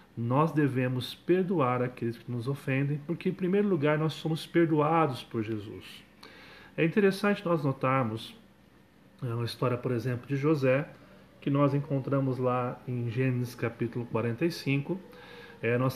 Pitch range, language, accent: 130-165 Hz, Portuguese, Brazilian